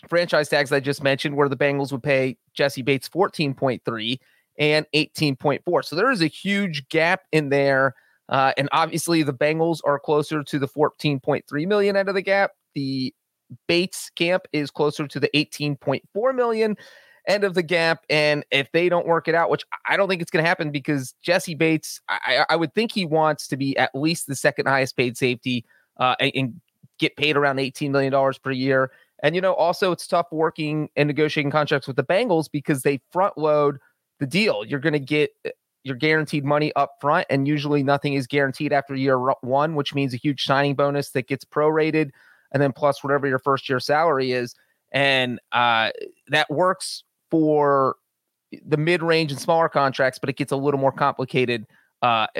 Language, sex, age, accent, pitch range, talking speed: English, male, 30-49, American, 135-160 Hz, 190 wpm